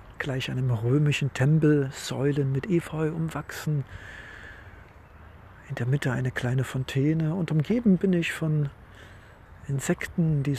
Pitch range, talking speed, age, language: 145-180 Hz, 120 wpm, 50-69, German